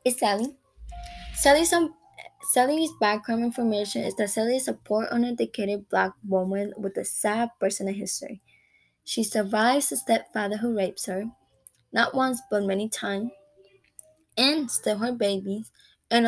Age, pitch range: 20-39, 205-285 Hz